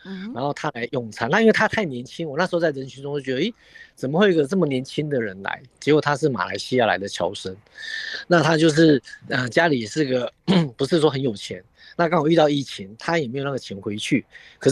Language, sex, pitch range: Chinese, male, 120-160 Hz